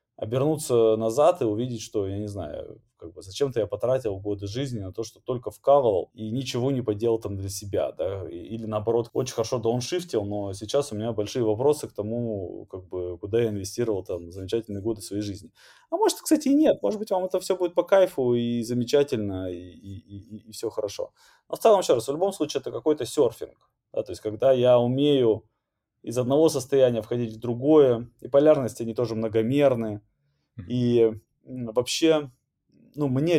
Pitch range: 105-140 Hz